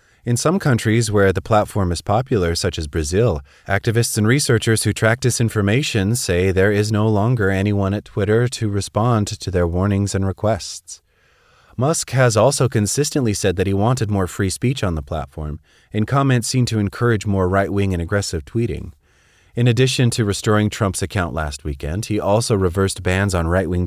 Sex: male